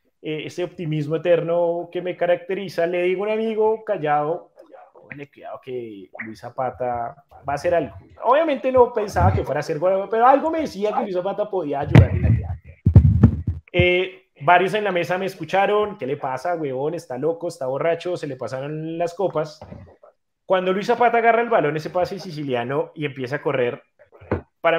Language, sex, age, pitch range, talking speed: Spanish, male, 30-49, 145-195 Hz, 175 wpm